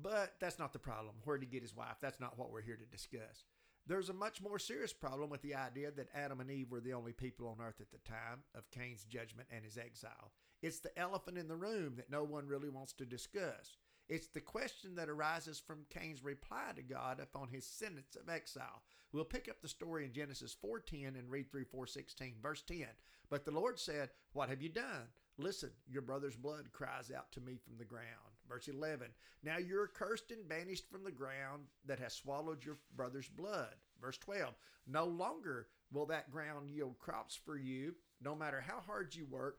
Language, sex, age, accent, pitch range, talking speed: English, male, 50-69, American, 130-180 Hz, 210 wpm